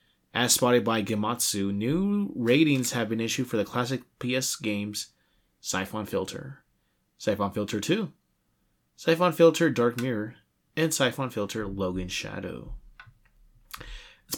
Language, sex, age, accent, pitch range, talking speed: English, male, 20-39, American, 110-150 Hz, 120 wpm